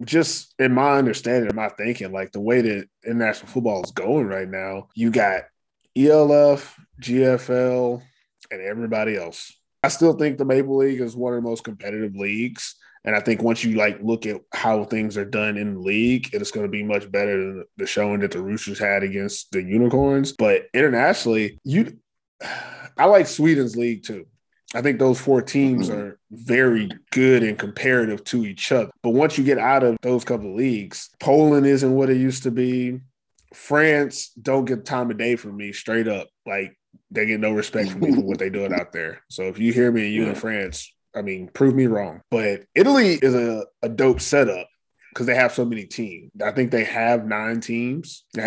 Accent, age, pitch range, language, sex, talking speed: American, 20-39, 105-130 Hz, English, male, 200 wpm